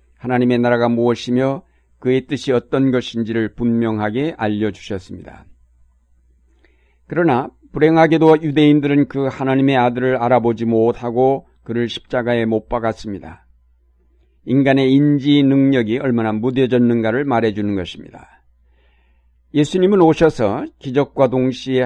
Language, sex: Korean, male